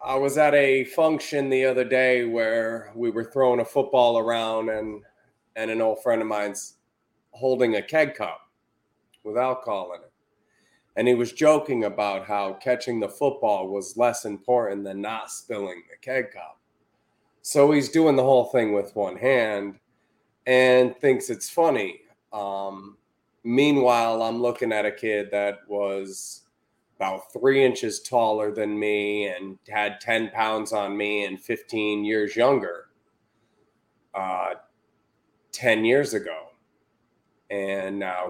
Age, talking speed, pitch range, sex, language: 30-49, 145 wpm, 100-125 Hz, male, English